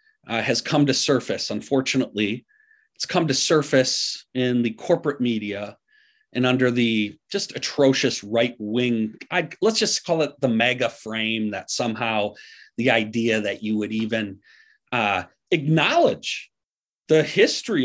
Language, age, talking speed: English, 40-59, 135 wpm